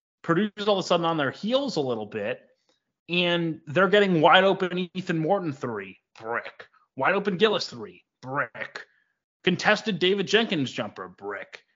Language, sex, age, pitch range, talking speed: English, male, 30-49, 125-185 Hz, 155 wpm